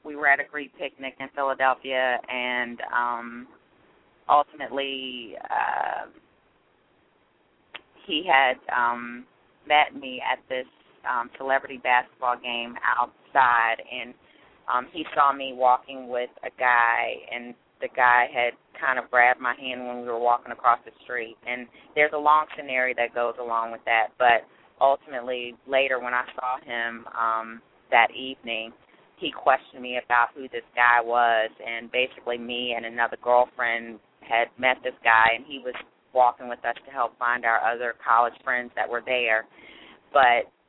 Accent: American